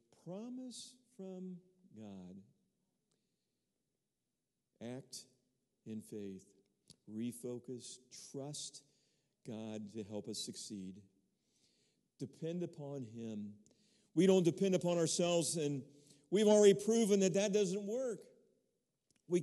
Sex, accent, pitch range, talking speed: male, American, 135-200 Hz, 95 wpm